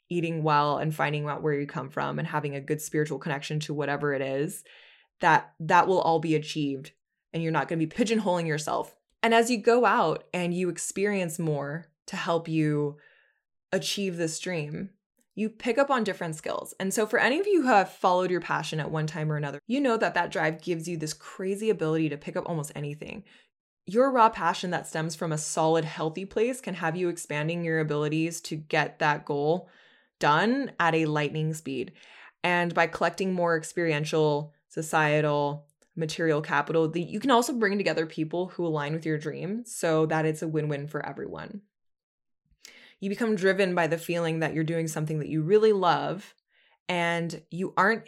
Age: 20-39